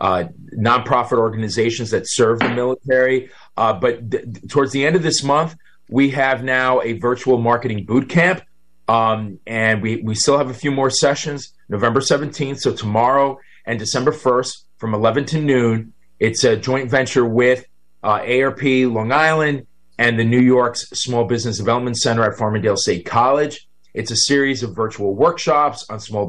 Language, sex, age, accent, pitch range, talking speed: English, male, 30-49, American, 105-130 Hz, 170 wpm